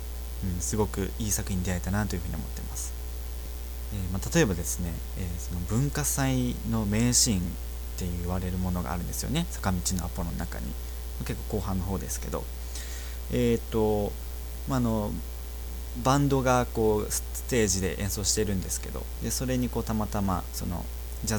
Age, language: 20-39, Japanese